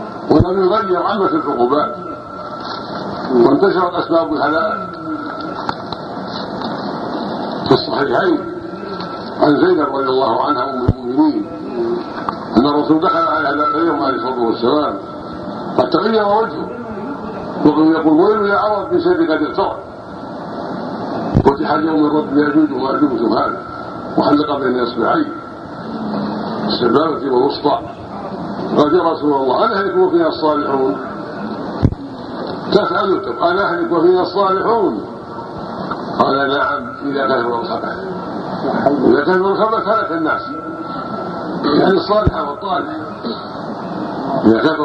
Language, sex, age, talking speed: Arabic, male, 60-79, 95 wpm